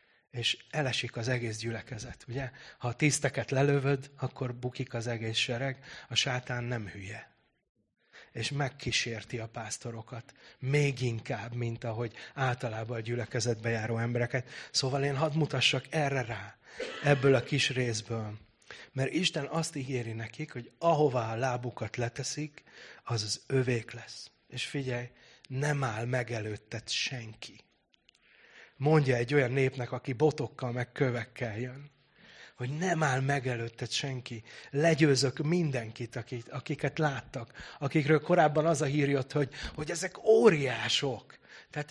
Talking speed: 130 wpm